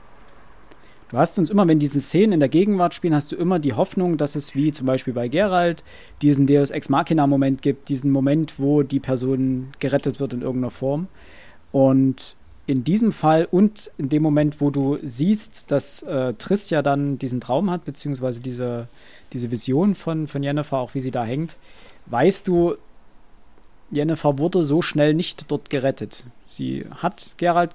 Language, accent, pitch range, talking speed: German, German, 125-155 Hz, 175 wpm